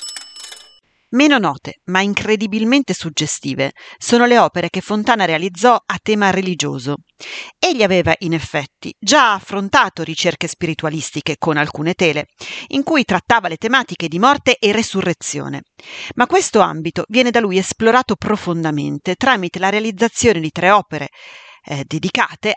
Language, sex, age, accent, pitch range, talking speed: Italian, female, 40-59, native, 165-235 Hz, 135 wpm